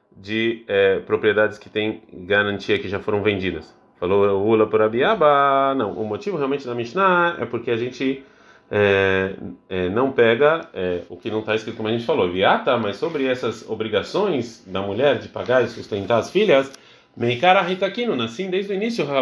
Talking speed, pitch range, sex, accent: 185 wpm, 105-175 Hz, male, Brazilian